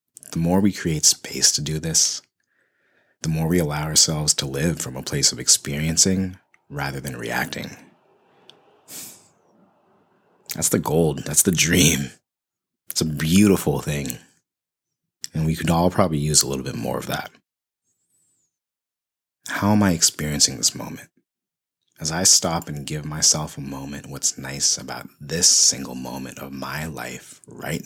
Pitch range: 70-85 Hz